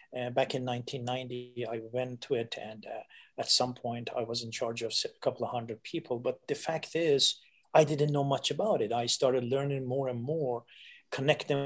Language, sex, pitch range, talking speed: English, male, 125-160 Hz, 205 wpm